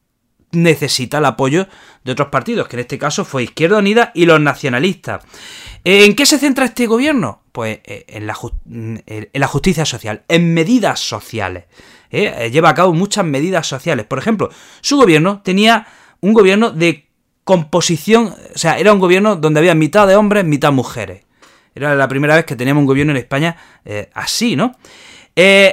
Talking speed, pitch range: 170 wpm, 125-195 Hz